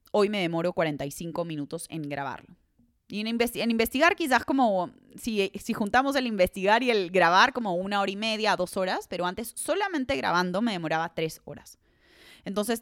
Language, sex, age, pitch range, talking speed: Spanish, female, 20-39, 175-245 Hz, 170 wpm